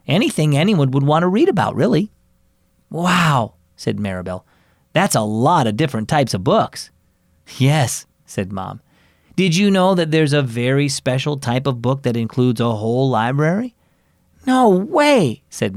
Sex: male